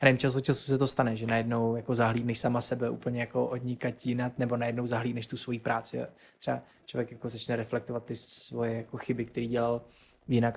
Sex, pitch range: male, 120-130 Hz